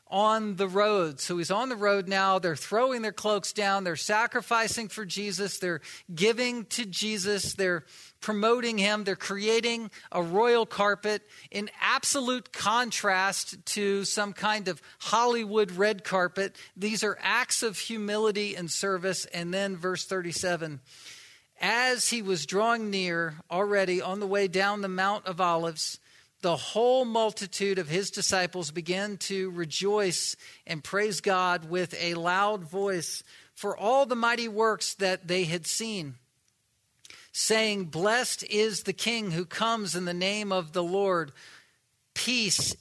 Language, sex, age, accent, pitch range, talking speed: English, male, 50-69, American, 180-215 Hz, 145 wpm